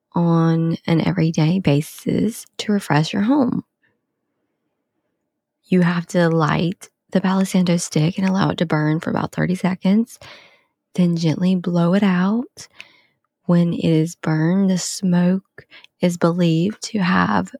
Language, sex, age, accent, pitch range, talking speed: English, female, 20-39, American, 165-210 Hz, 135 wpm